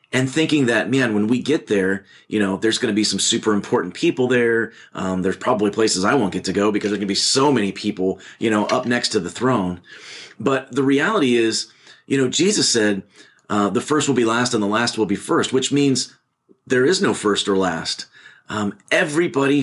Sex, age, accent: male, 30-49, American